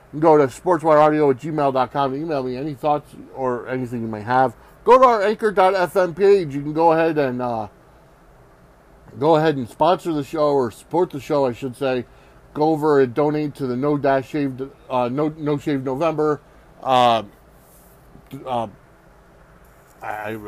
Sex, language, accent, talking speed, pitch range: male, English, American, 150 wpm, 130-155 Hz